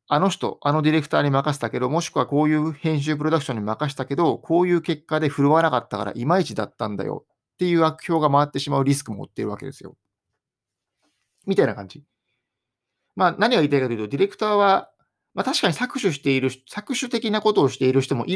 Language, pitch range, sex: Japanese, 125-165 Hz, male